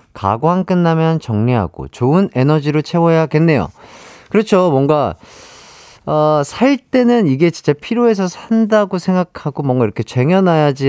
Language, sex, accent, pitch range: Korean, male, native, 110-175 Hz